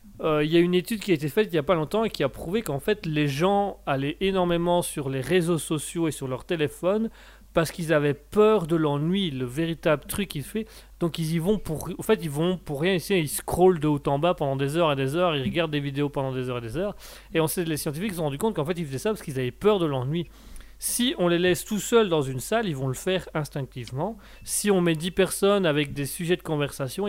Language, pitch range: French, 140-185 Hz